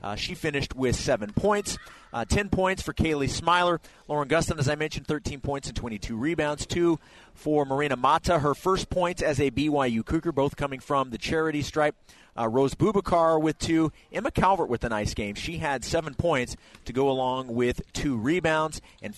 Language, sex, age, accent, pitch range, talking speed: English, male, 30-49, American, 135-165 Hz, 190 wpm